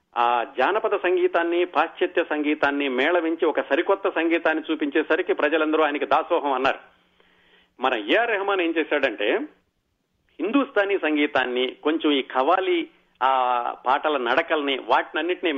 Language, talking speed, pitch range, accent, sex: Telugu, 110 wpm, 140-190 Hz, native, male